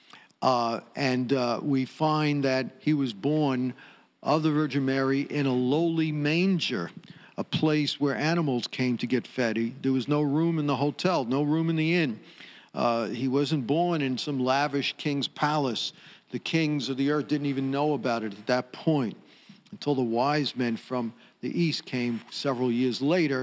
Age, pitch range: 50-69, 125-155 Hz